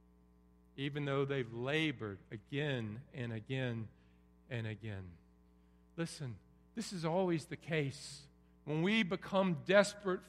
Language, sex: English, male